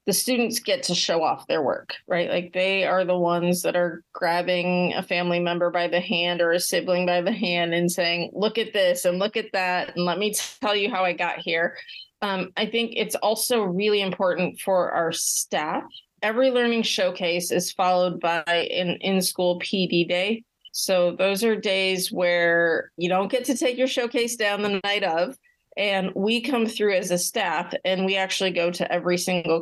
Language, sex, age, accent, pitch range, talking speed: English, female, 30-49, American, 175-210 Hz, 195 wpm